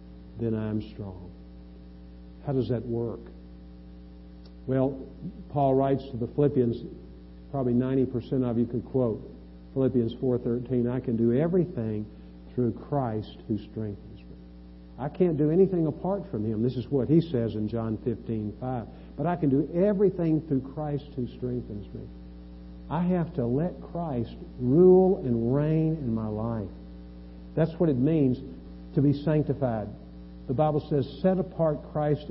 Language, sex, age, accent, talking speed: English, male, 50-69, American, 150 wpm